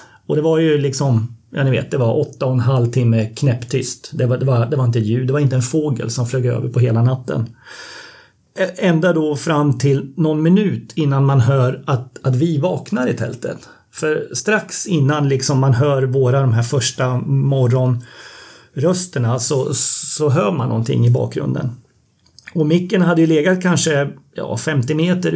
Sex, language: male, Swedish